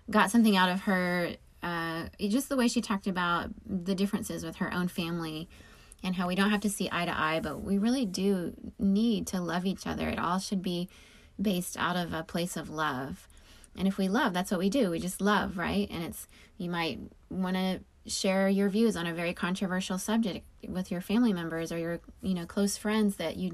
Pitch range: 170-205 Hz